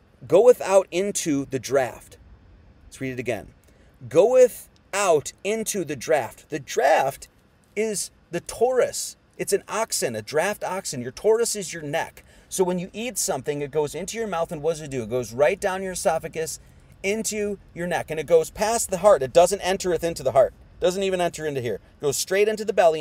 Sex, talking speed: male, 205 wpm